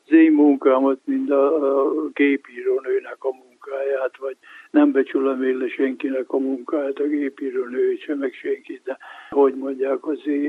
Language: Hungarian